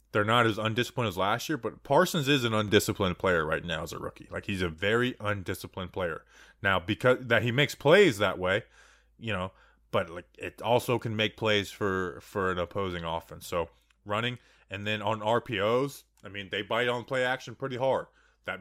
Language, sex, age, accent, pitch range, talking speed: English, male, 20-39, American, 110-145 Hz, 200 wpm